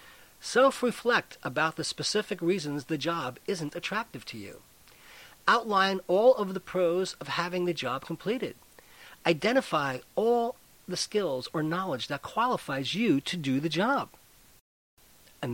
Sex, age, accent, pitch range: male, 40-59, American, 145-200 Hz